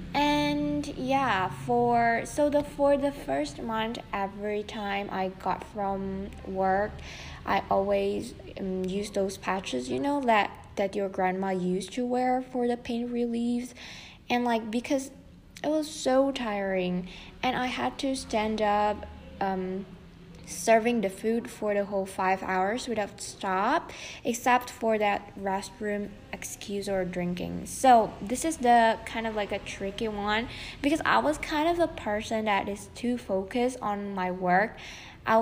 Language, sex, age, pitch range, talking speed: Indonesian, female, 20-39, 195-245 Hz, 150 wpm